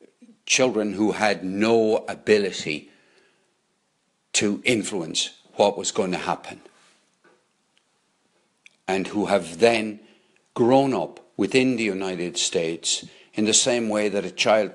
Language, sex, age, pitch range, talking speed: English, male, 60-79, 90-110 Hz, 120 wpm